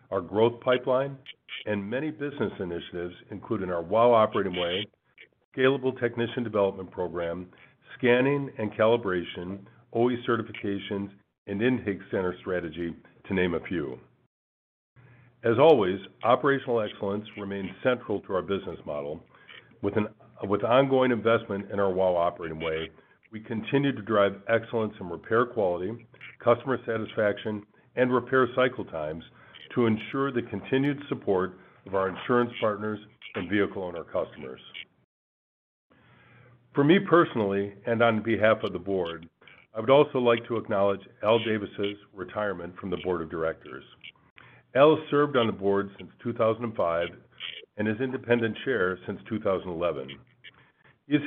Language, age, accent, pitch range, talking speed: English, 50-69, American, 95-120 Hz, 135 wpm